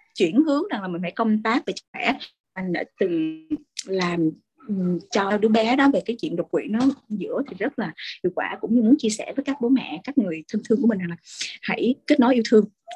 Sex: female